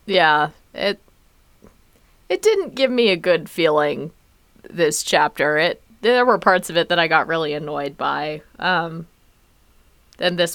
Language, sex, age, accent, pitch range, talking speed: English, female, 20-39, American, 170-230 Hz, 150 wpm